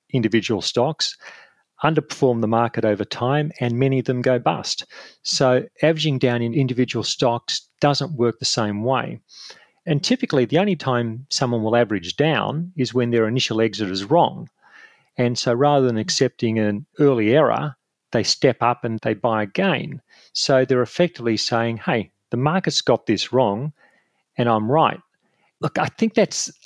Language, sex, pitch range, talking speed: English, male, 115-140 Hz, 160 wpm